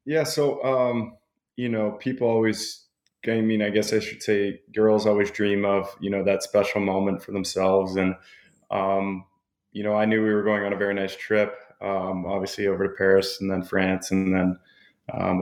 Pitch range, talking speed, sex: 95-105 Hz, 195 wpm, male